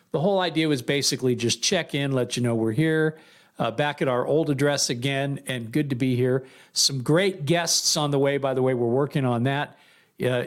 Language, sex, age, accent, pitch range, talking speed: English, male, 50-69, American, 125-155 Hz, 225 wpm